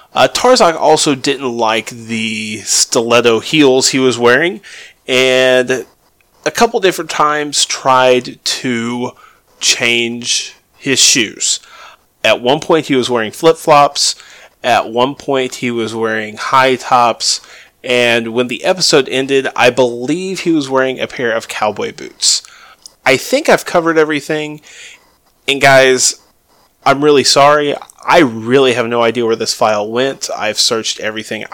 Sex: male